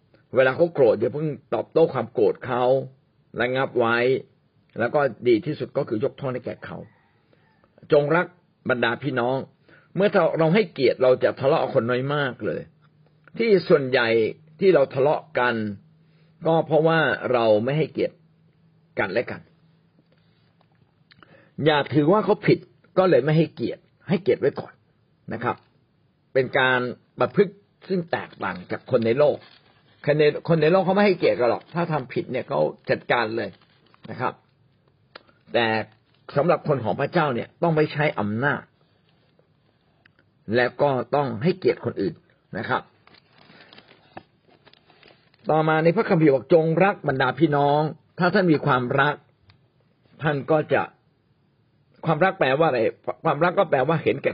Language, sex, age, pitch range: Thai, male, 60-79, 130-165 Hz